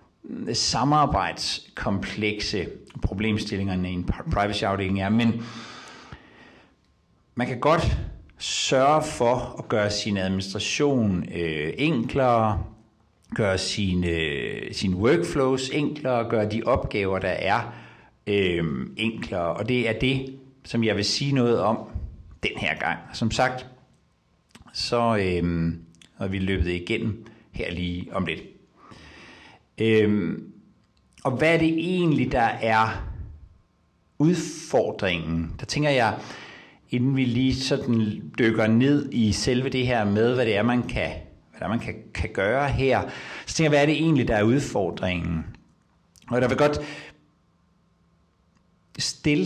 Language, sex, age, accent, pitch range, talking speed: Danish, male, 60-79, native, 95-130 Hz, 130 wpm